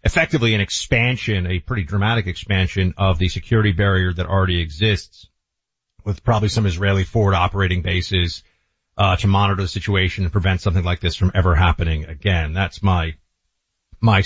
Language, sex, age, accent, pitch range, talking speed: English, male, 40-59, American, 90-110 Hz, 160 wpm